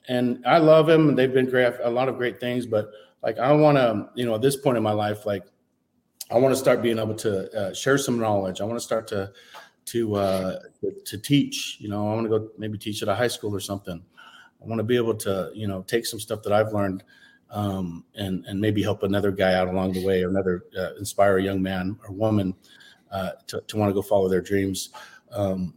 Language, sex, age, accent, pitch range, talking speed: English, male, 40-59, American, 100-130 Hz, 240 wpm